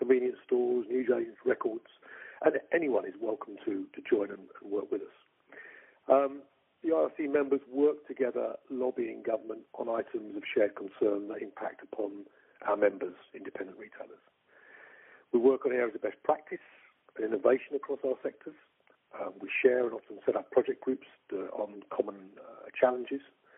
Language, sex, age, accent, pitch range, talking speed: English, male, 50-69, British, 300-415 Hz, 160 wpm